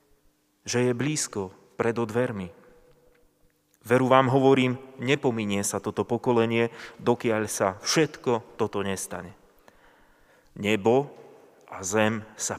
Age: 30-49